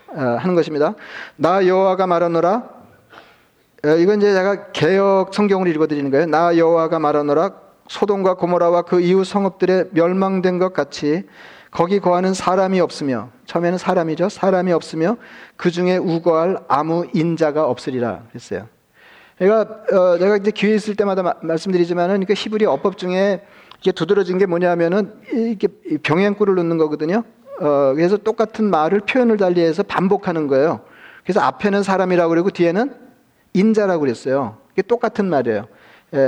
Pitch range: 165-200 Hz